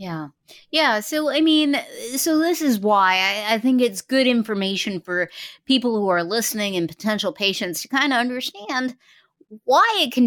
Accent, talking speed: American, 175 wpm